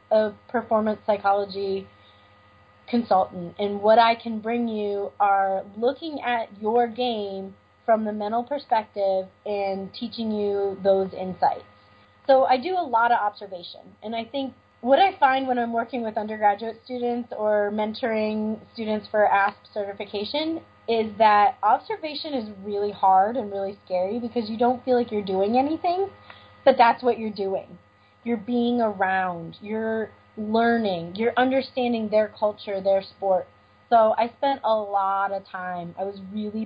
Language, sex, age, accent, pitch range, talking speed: English, female, 20-39, American, 195-240 Hz, 150 wpm